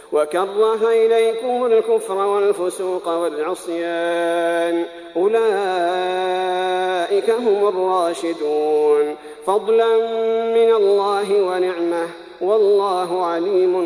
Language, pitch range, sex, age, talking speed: Arabic, 185-225 Hz, male, 40-59, 60 wpm